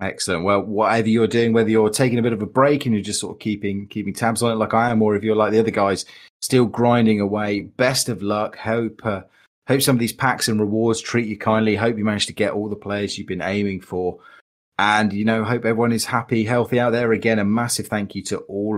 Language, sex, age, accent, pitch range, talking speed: English, male, 30-49, British, 95-115 Hz, 255 wpm